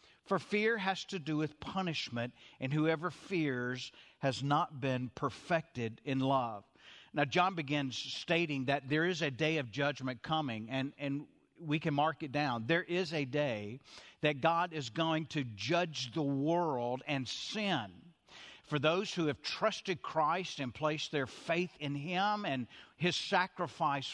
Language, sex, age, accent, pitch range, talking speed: English, male, 50-69, American, 135-170 Hz, 160 wpm